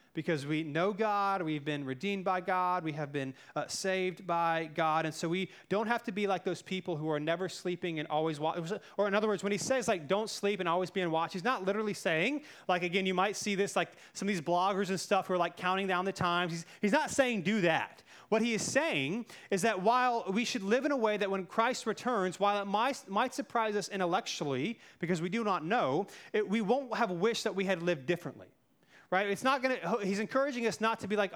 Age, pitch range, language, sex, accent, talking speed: 30-49, 180-220 Hz, English, male, American, 245 wpm